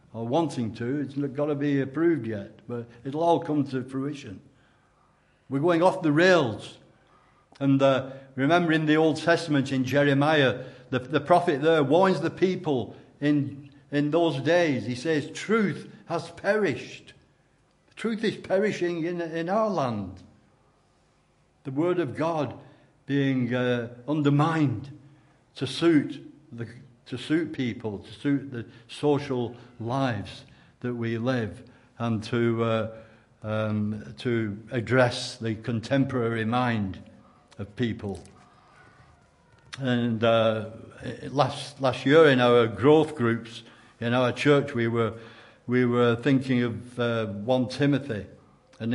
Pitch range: 115-145 Hz